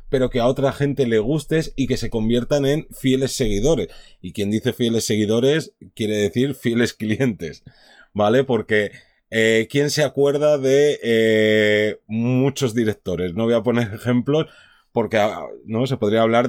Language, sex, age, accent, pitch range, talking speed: Spanish, male, 30-49, Spanish, 110-130 Hz, 155 wpm